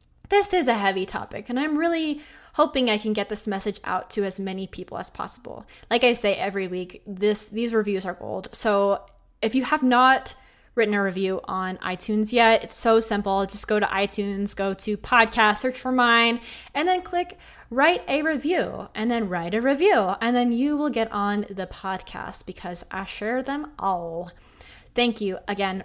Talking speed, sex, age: 190 wpm, female, 20-39